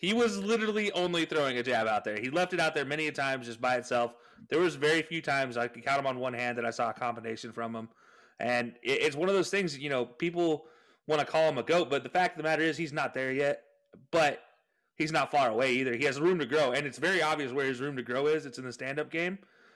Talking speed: 275 wpm